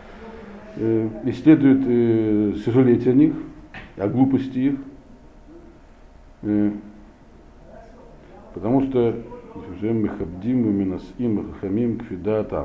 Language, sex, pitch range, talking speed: Russian, male, 95-130 Hz, 45 wpm